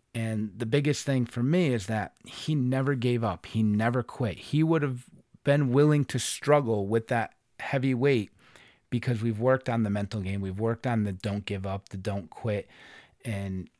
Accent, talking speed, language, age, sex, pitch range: American, 190 wpm, English, 30-49, male, 105-130 Hz